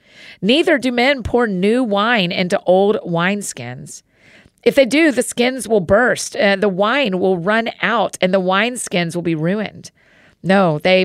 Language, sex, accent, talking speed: English, female, American, 165 wpm